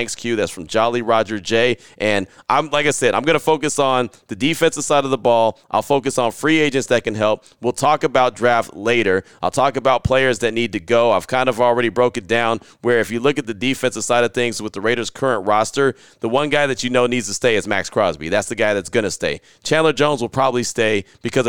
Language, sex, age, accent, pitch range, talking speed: English, male, 30-49, American, 110-135 Hz, 255 wpm